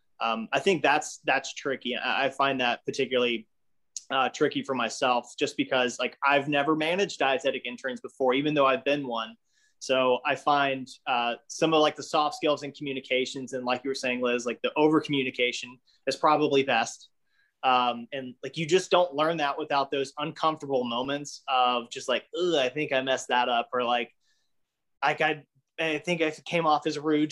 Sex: male